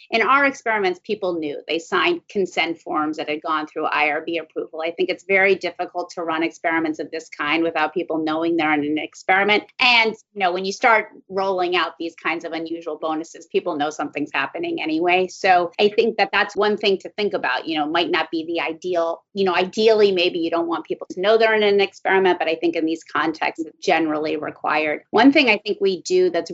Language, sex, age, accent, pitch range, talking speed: English, female, 30-49, American, 165-210 Hz, 220 wpm